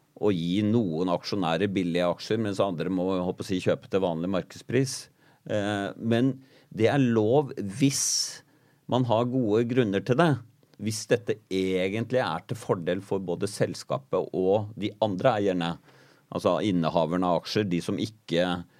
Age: 40-59